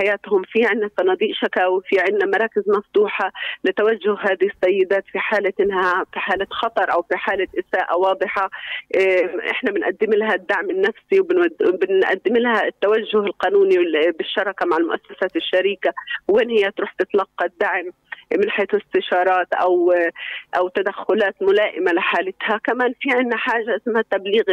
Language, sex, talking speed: Arabic, female, 130 wpm